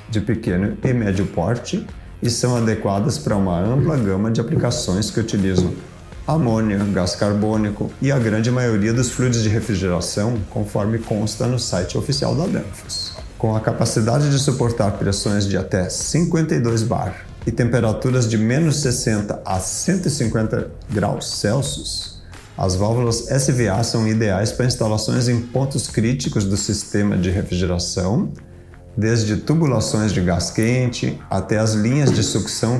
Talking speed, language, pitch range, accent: 140 wpm, Portuguese, 95-120 Hz, Brazilian